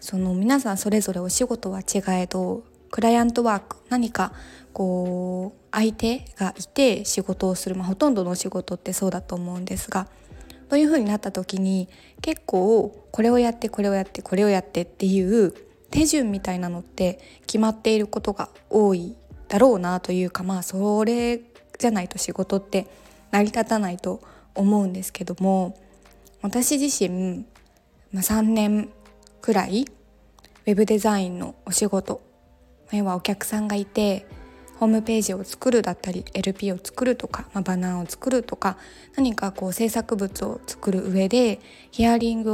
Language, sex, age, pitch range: Japanese, female, 20-39, 185-225 Hz